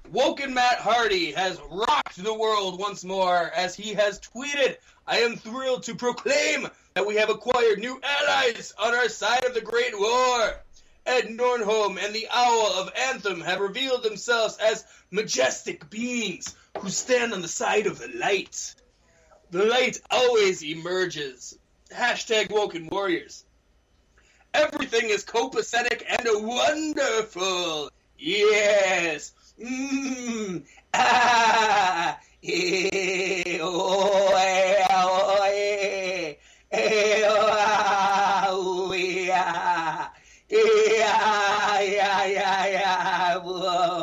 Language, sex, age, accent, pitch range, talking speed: English, male, 20-39, American, 185-260 Hz, 90 wpm